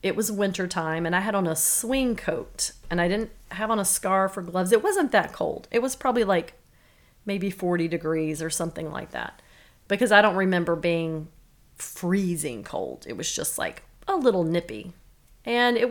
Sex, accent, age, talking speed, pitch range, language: female, American, 30-49, 190 wpm, 165-215 Hz, English